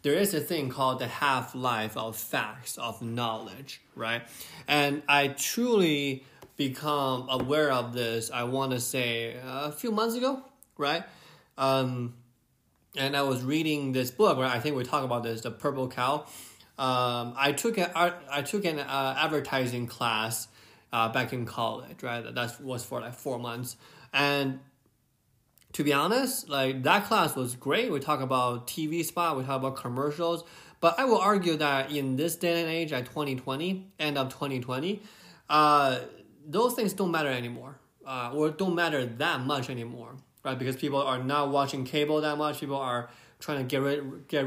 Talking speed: 175 wpm